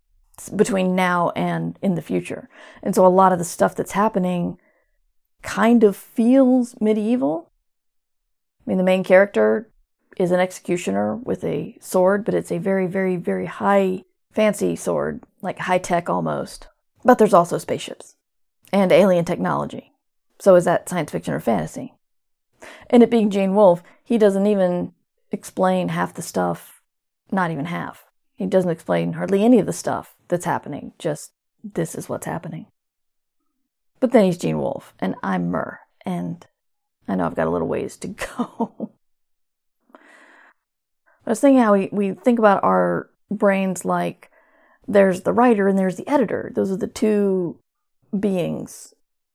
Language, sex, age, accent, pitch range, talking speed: English, female, 40-59, American, 175-215 Hz, 155 wpm